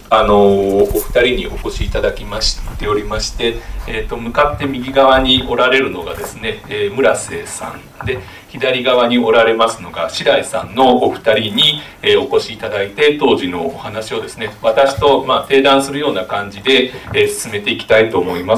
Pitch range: 115-180 Hz